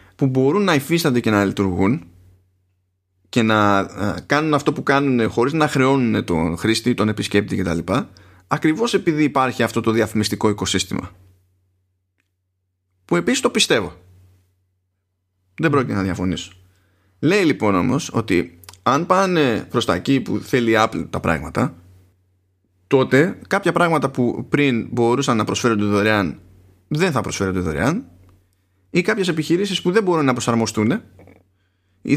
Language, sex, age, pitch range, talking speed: Greek, male, 20-39, 95-130 Hz, 135 wpm